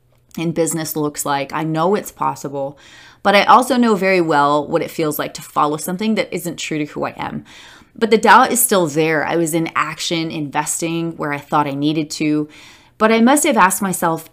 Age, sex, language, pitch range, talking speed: 20-39, female, English, 155-200 Hz, 215 wpm